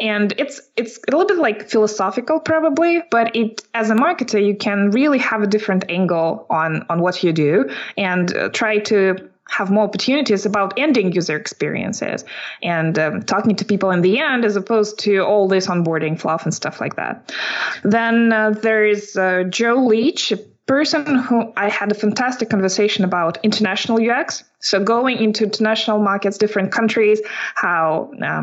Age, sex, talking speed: 20-39, female, 175 wpm